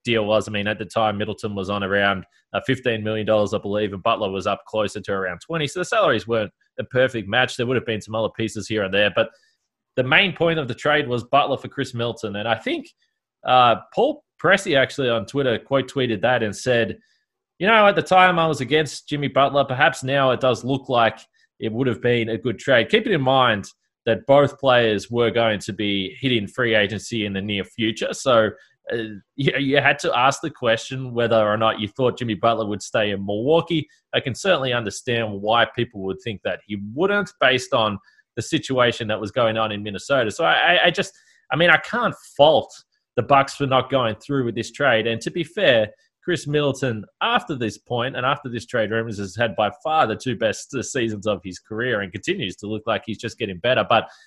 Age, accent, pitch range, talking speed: 20-39, Australian, 110-140 Hz, 220 wpm